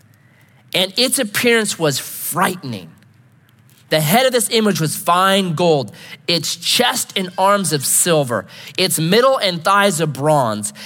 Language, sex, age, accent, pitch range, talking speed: English, male, 30-49, American, 130-185 Hz, 140 wpm